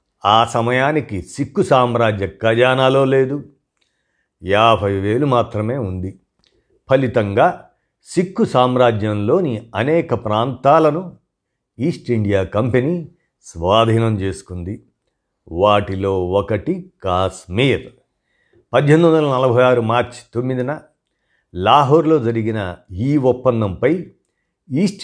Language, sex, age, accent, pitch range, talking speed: Telugu, male, 50-69, native, 105-140 Hz, 80 wpm